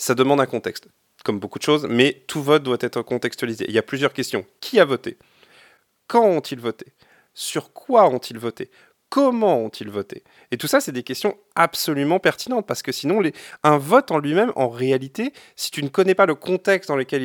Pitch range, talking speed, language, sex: 120-175 Hz, 200 wpm, French, male